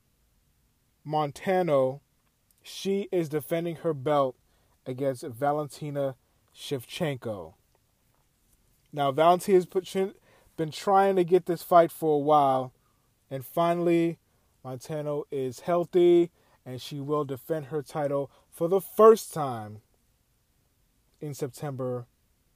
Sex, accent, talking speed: male, American, 100 wpm